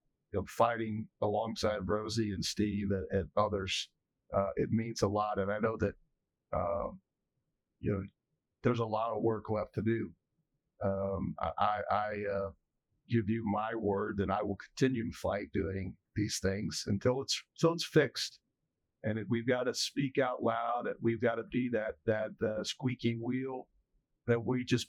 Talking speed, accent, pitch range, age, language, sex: 175 wpm, American, 105-120 Hz, 50-69, English, male